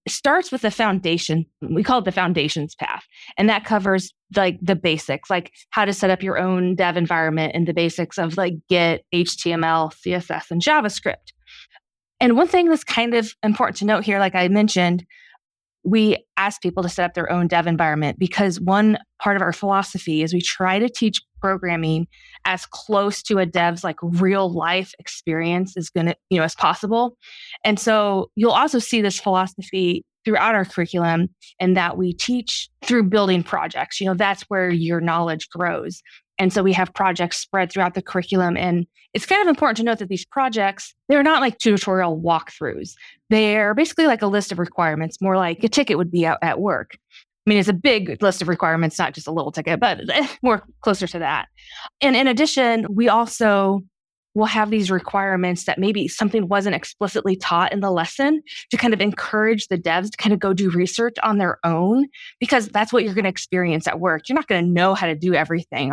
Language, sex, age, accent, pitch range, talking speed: English, female, 20-39, American, 175-215 Hz, 200 wpm